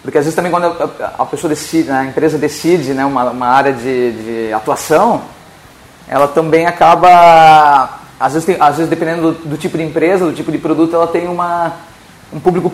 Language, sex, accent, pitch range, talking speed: Portuguese, male, Brazilian, 150-180 Hz, 195 wpm